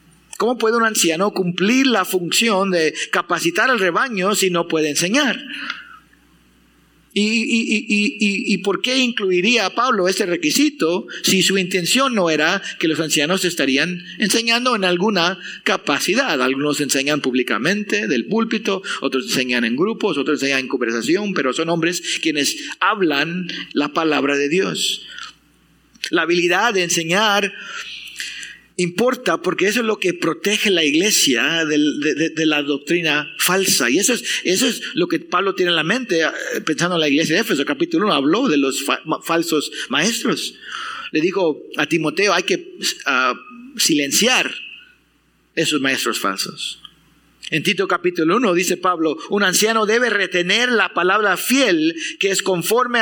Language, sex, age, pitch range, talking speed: English, male, 50-69, 160-220 Hz, 150 wpm